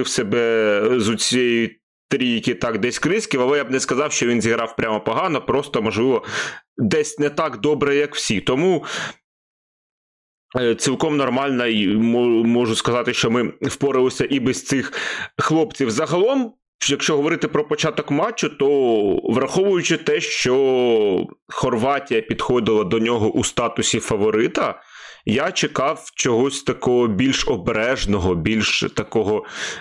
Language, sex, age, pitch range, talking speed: Ukrainian, male, 30-49, 115-145 Hz, 130 wpm